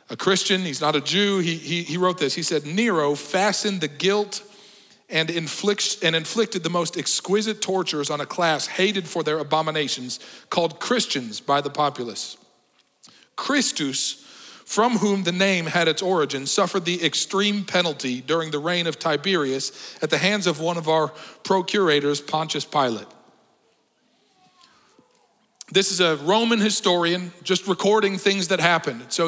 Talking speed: 150 wpm